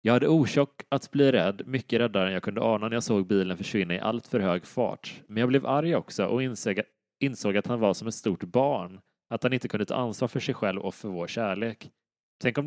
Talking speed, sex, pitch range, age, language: 240 wpm, male, 100-130 Hz, 30-49, English